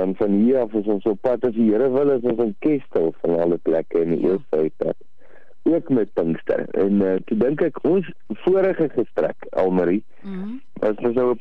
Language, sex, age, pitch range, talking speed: English, male, 50-69, 95-130 Hz, 195 wpm